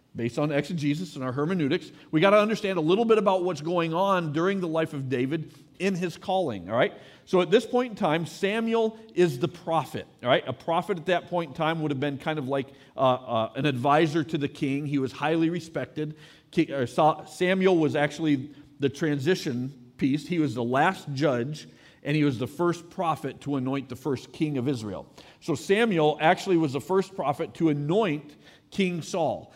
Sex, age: male, 40-59